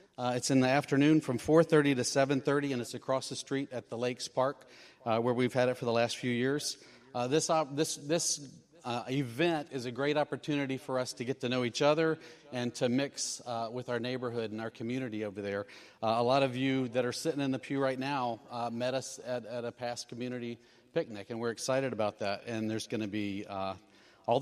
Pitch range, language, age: 120-145 Hz, English, 40-59